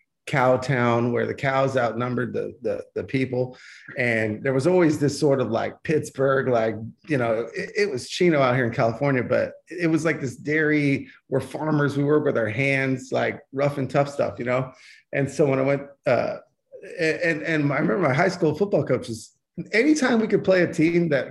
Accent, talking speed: American, 205 wpm